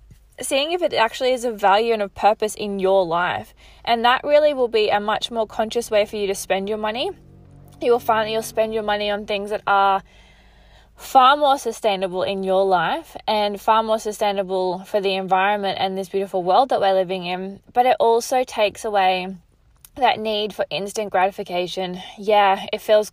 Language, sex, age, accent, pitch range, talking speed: English, female, 20-39, Australian, 190-225 Hz, 195 wpm